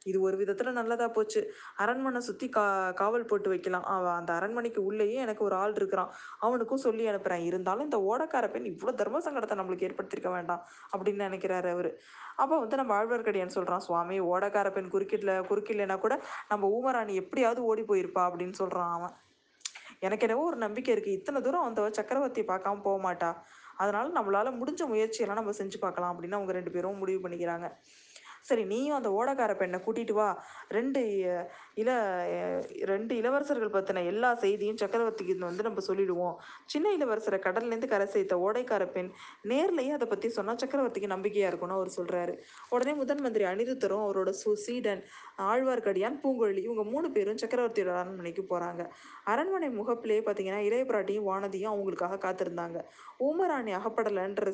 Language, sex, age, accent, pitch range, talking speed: Tamil, female, 20-39, native, 190-235 Hz, 150 wpm